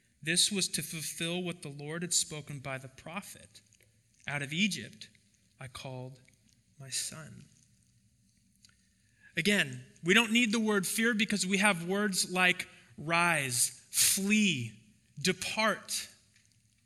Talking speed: 120 wpm